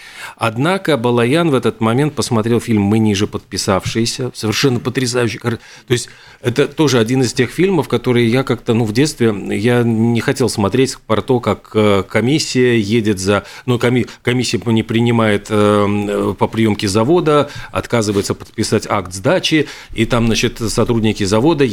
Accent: native